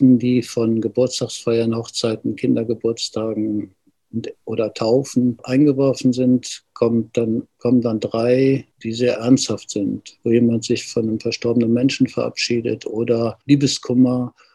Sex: male